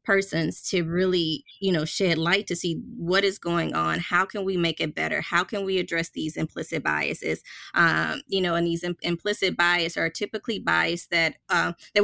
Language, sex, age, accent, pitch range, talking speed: English, female, 20-39, American, 170-195 Hz, 200 wpm